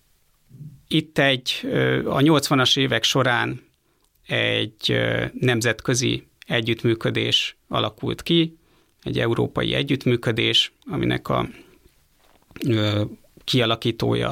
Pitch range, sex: 110-135 Hz, male